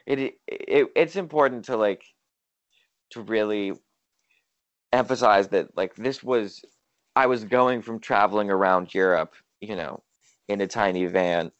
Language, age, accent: English, 20-39, American